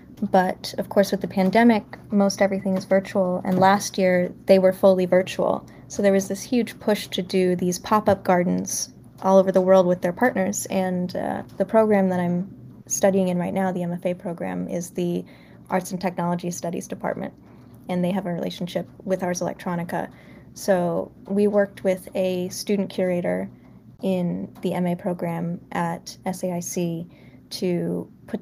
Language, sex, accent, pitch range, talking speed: English, female, American, 175-195 Hz, 165 wpm